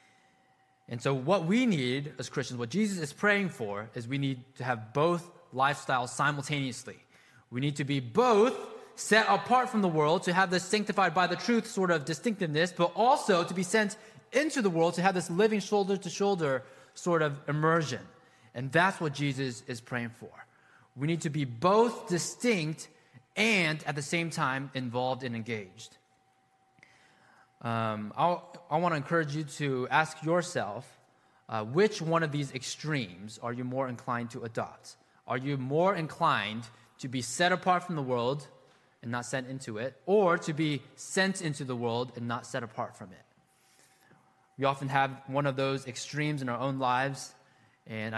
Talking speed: 175 wpm